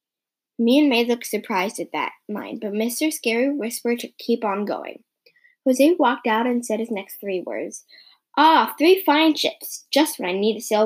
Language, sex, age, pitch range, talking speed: English, female, 10-29, 220-300 Hz, 195 wpm